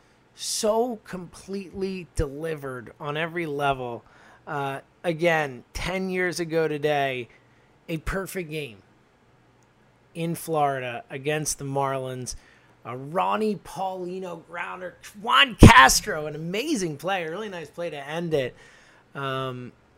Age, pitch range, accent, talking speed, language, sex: 20-39, 130-175 Hz, American, 110 wpm, English, male